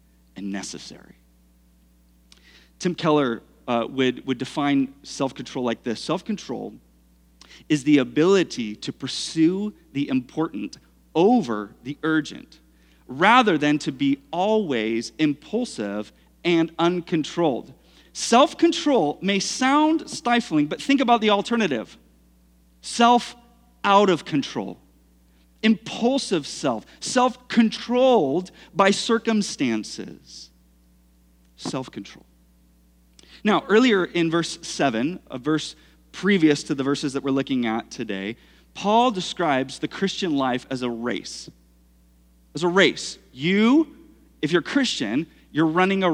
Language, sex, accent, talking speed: English, male, American, 110 wpm